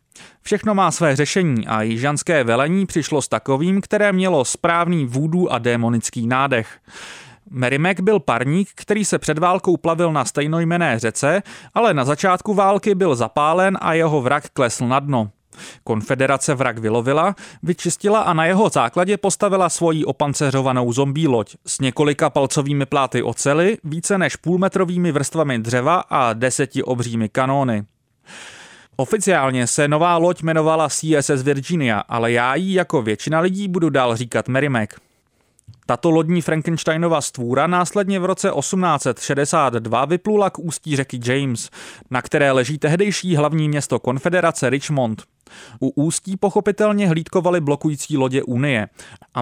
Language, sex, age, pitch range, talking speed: English, male, 30-49, 130-175 Hz, 135 wpm